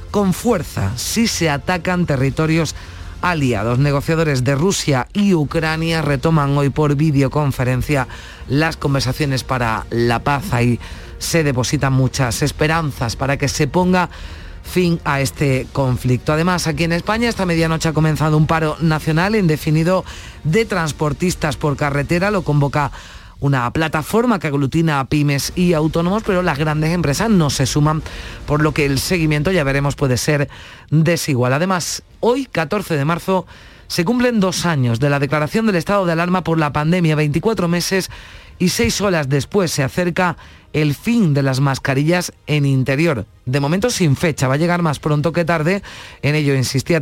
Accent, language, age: Spanish, Spanish, 40-59